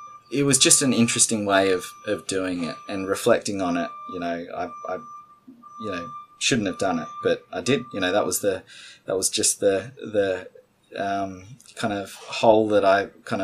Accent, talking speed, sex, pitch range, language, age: Australian, 195 wpm, male, 100-120 Hz, English, 20-39